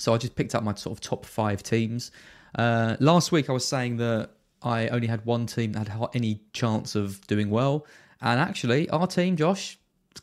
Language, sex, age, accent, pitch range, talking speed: English, male, 20-39, British, 100-145 Hz, 210 wpm